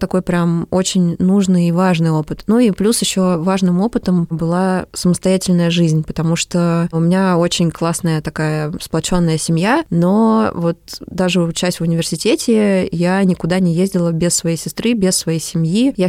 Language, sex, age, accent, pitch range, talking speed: Russian, female, 20-39, native, 170-200 Hz, 155 wpm